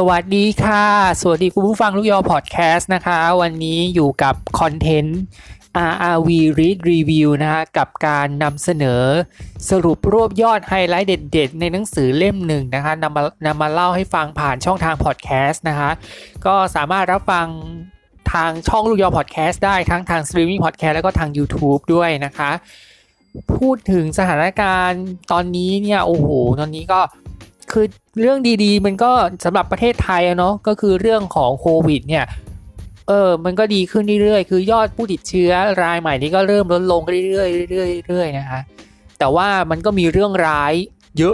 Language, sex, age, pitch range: Thai, male, 20-39, 155-190 Hz